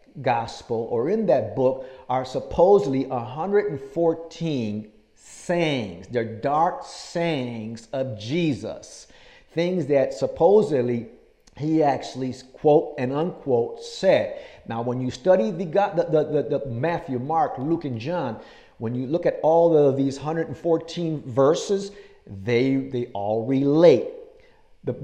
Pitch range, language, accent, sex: 125-170 Hz, English, American, male